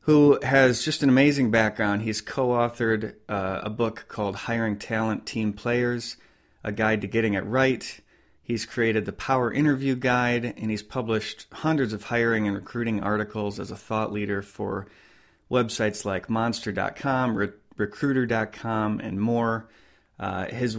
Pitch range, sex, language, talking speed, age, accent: 105-125 Hz, male, English, 140 wpm, 30-49, American